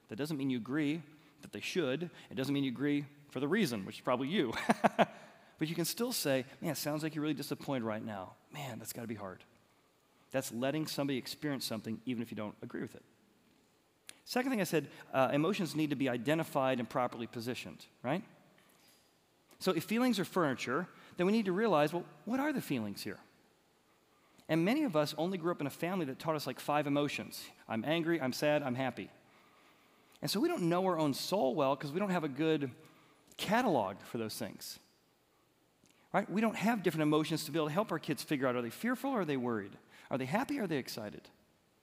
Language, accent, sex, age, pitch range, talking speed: English, American, male, 40-59, 135-185 Hz, 220 wpm